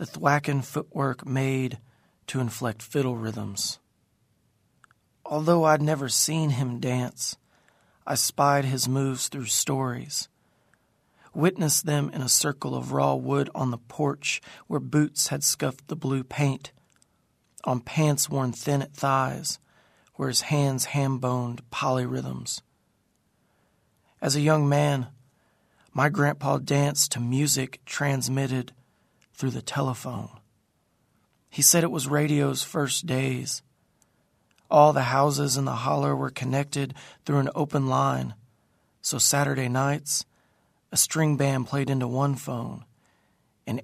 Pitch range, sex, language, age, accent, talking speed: 125-145 Hz, male, English, 40-59, American, 125 wpm